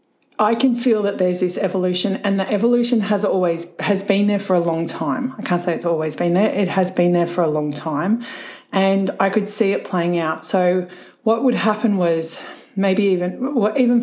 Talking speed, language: 215 wpm, English